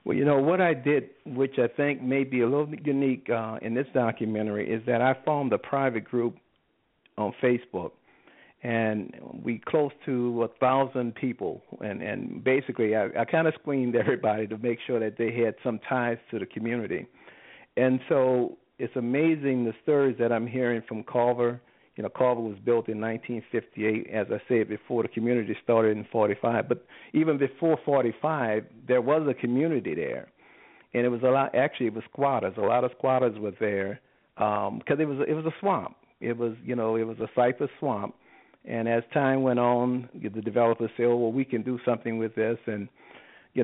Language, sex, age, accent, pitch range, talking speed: English, male, 50-69, American, 115-130 Hz, 195 wpm